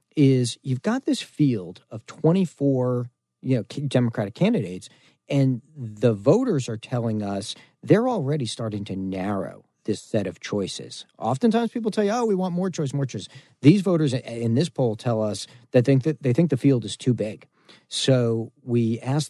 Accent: American